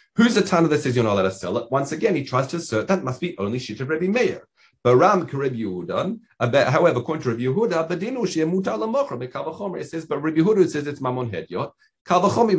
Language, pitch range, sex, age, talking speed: English, 120-175 Hz, male, 40-59, 210 wpm